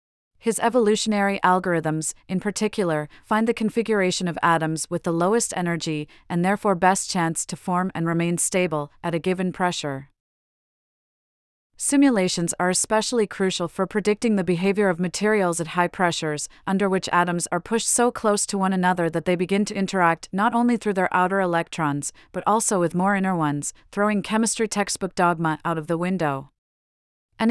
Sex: female